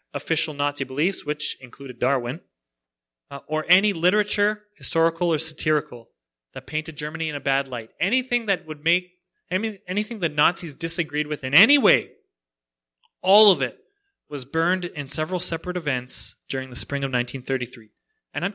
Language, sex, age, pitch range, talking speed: English, male, 30-49, 120-165 Hz, 155 wpm